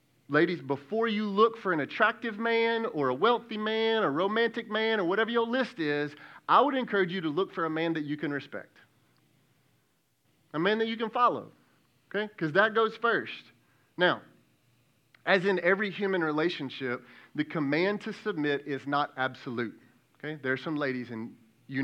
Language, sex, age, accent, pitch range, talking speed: English, male, 30-49, American, 125-170 Hz, 175 wpm